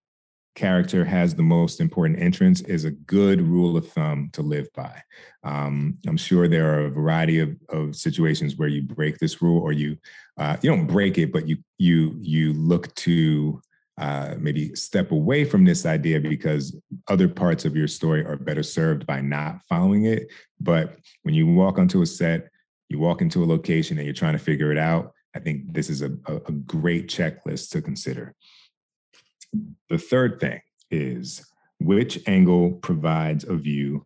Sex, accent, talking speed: male, American, 180 wpm